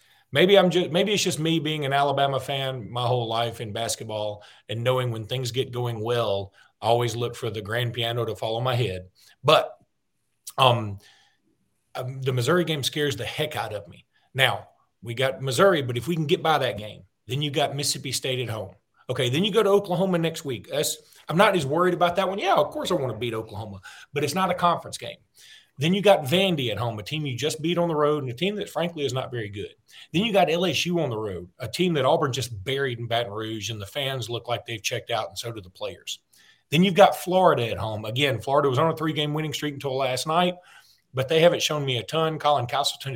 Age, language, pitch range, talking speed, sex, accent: 40-59, English, 120-160 Hz, 240 wpm, male, American